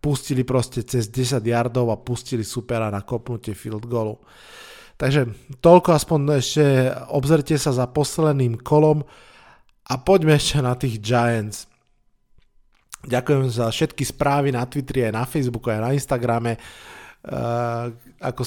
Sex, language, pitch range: male, Slovak, 120-145 Hz